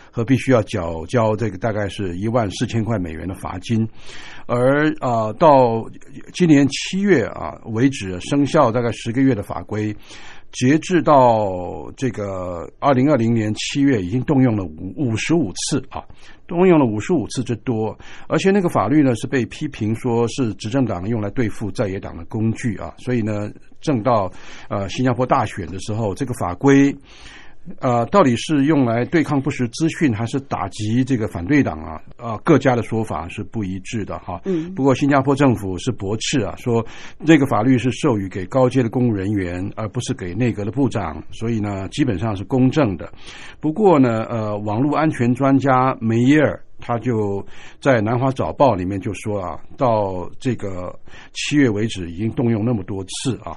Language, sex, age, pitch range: Chinese, male, 60-79, 105-135 Hz